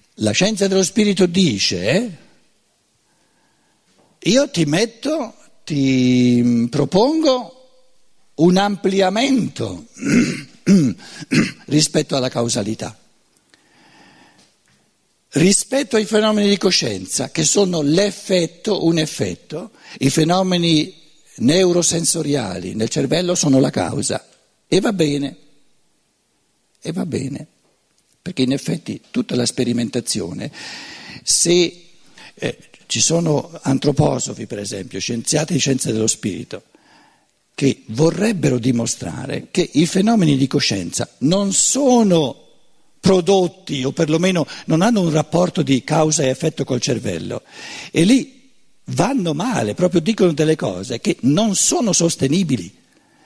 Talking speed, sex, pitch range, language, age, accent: 105 wpm, male, 135-195 Hz, Italian, 60-79, native